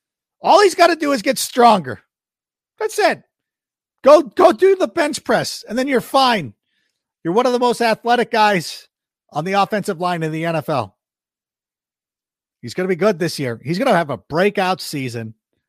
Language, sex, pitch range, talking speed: English, male, 115-190 Hz, 185 wpm